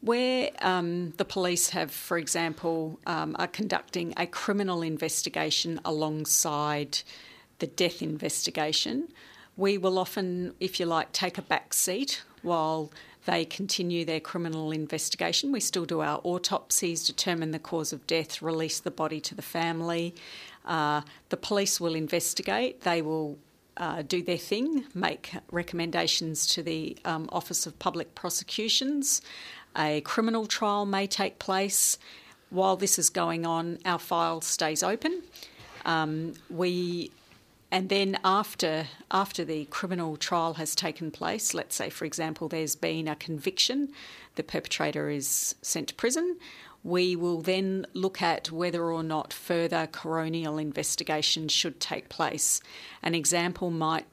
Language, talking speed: English, 140 wpm